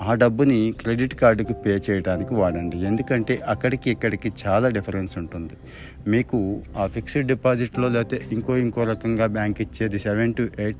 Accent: native